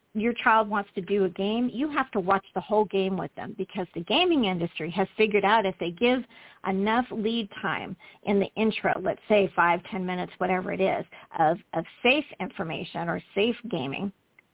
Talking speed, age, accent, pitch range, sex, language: 195 wpm, 50-69, American, 185-225 Hz, female, English